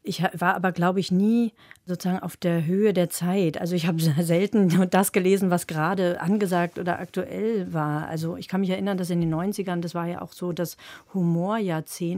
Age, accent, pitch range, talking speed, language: 40-59, German, 160-180 Hz, 200 wpm, German